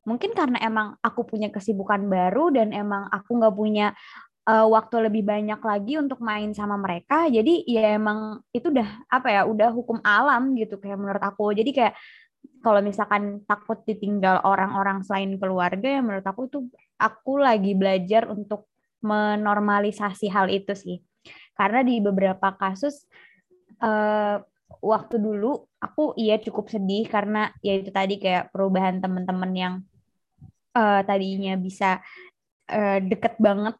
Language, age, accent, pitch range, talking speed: Indonesian, 20-39, native, 195-235 Hz, 145 wpm